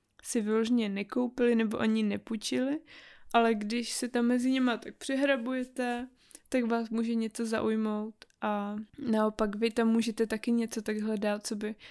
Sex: female